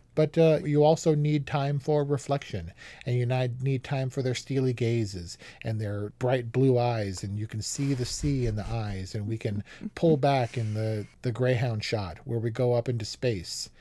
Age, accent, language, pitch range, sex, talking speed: 40-59, American, English, 110-140 Hz, male, 200 wpm